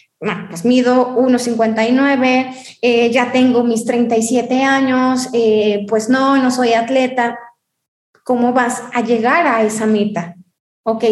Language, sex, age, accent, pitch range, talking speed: Spanish, female, 20-39, Mexican, 225-270 Hz, 130 wpm